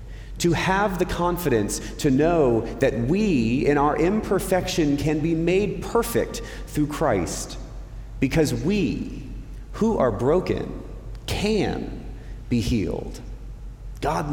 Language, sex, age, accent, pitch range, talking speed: English, male, 30-49, American, 115-150 Hz, 110 wpm